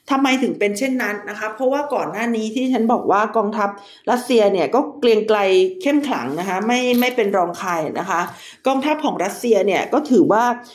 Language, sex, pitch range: Thai, female, 200-255 Hz